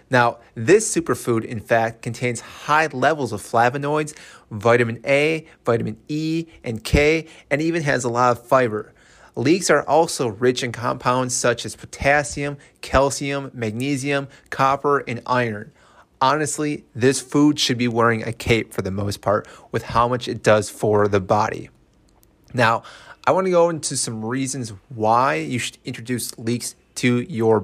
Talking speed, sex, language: 155 wpm, male, English